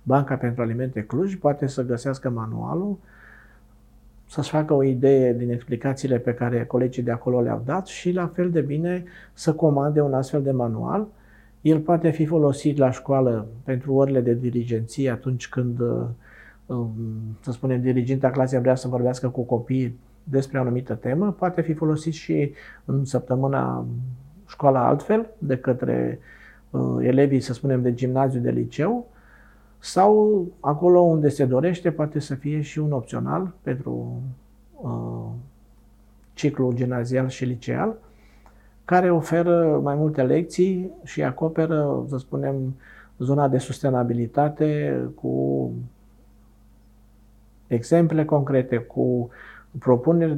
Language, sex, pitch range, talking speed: Romanian, male, 120-150 Hz, 130 wpm